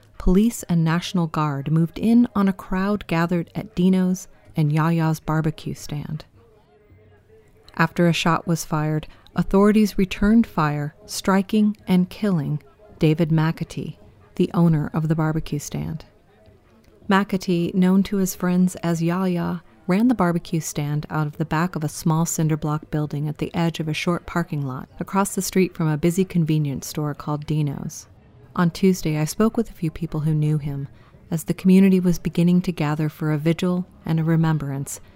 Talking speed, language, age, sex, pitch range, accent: 165 wpm, English, 40-59, female, 155-180 Hz, American